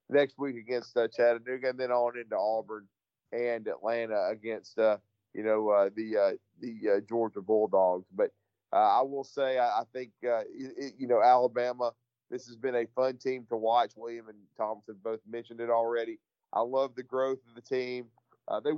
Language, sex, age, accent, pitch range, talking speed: English, male, 40-59, American, 115-130 Hz, 190 wpm